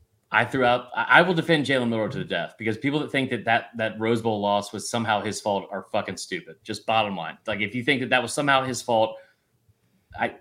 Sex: male